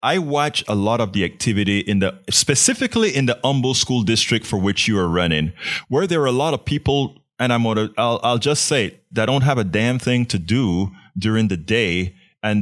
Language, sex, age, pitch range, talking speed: English, male, 30-49, 100-125 Hz, 220 wpm